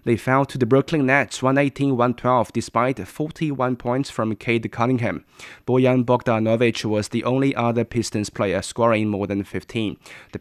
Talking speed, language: 150 wpm, English